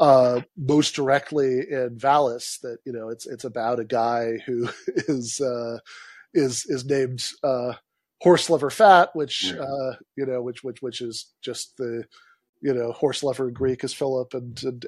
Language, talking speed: English, 175 wpm